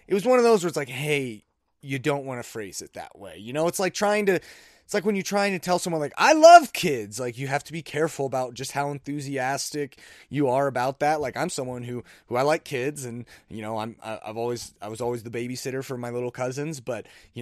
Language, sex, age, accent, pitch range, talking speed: English, male, 30-49, American, 115-155 Hz, 255 wpm